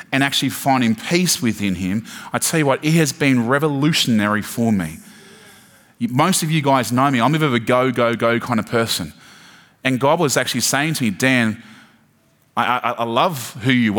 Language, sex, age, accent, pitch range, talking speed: English, male, 20-39, Australian, 110-135 Hz, 195 wpm